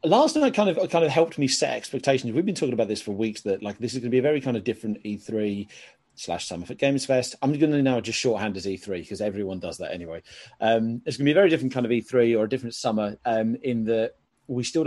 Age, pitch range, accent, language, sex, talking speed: 30-49, 110-135 Hz, British, English, male, 260 wpm